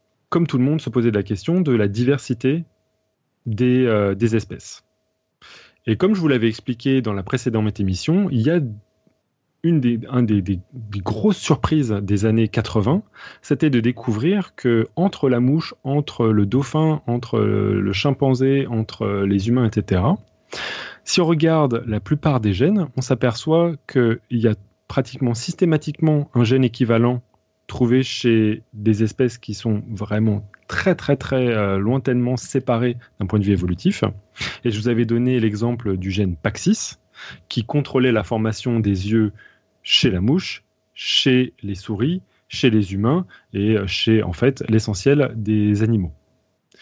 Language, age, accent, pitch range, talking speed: French, 30-49, French, 105-140 Hz, 155 wpm